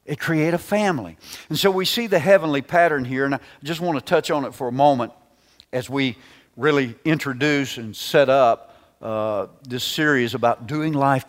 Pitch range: 115-160 Hz